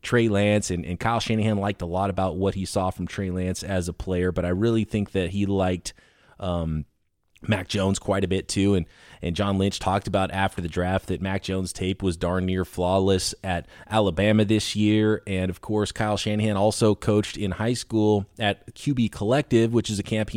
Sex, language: male, English